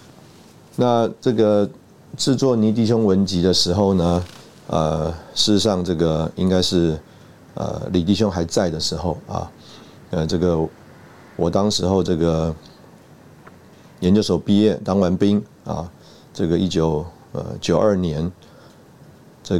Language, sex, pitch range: Chinese, male, 80-100 Hz